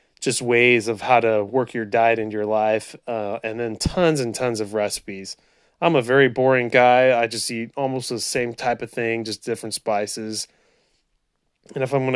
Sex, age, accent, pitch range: male, 20-39, American, 110-135 Hz